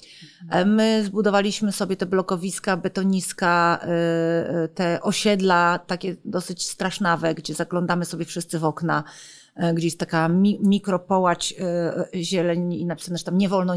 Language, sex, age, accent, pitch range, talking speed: Polish, female, 40-59, native, 175-205 Hz, 120 wpm